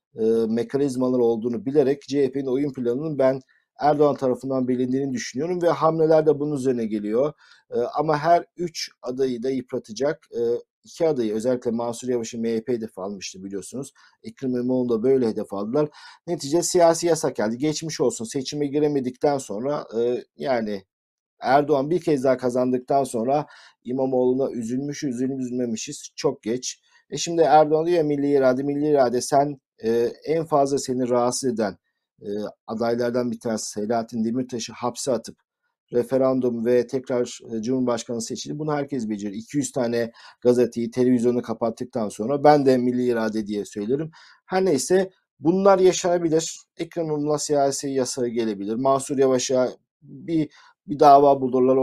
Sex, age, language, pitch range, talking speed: male, 50-69, Turkish, 120-150 Hz, 135 wpm